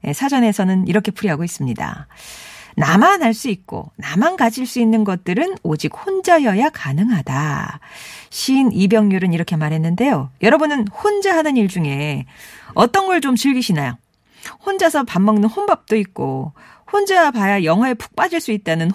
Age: 40-59